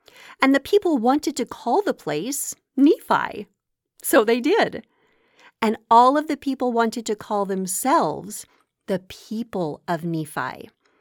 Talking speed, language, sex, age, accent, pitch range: 135 wpm, English, female, 40-59, American, 195-290 Hz